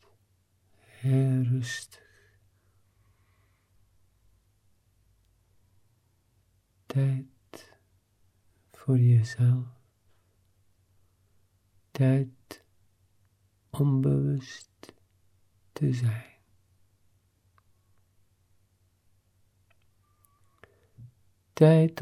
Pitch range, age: 95-120 Hz, 50-69